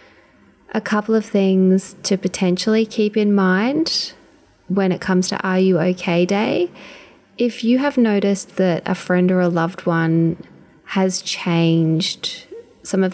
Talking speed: 145 wpm